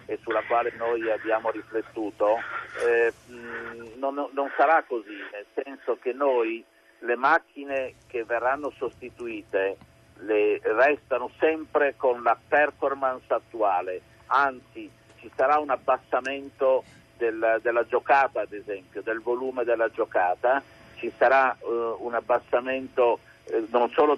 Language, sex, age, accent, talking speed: Italian, male, 50-69, native, 120 wpm